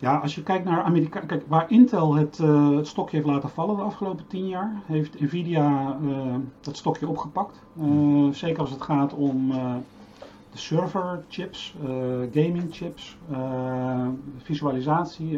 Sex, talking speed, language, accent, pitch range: male, 150 wpm, Dutch, Dutch, 130-155 Hz